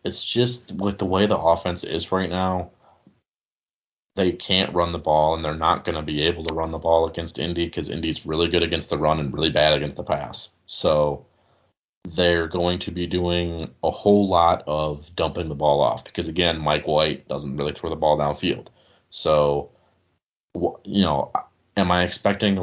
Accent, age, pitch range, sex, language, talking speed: American, 30-49, 75-90 Hz, male, English, 190 wpm